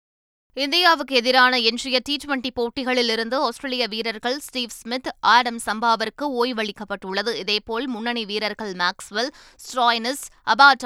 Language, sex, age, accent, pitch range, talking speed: Tamil, female, 20-39, native, 215-255 Hz, 105 wpm